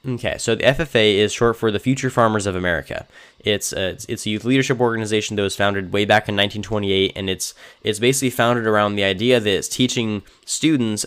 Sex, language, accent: male, English, American